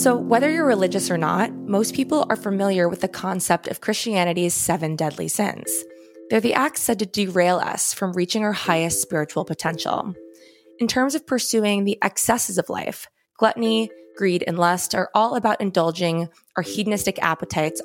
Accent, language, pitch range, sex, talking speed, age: American, English, 170-220 Hz, female, 170 wpm, 20-39